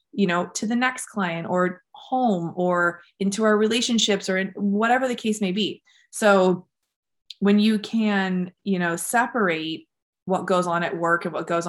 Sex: female